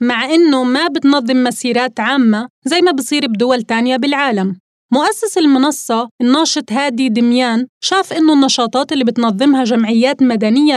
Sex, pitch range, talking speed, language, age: female, 235-295 Hz, 135 wpm, Arabic, 20-39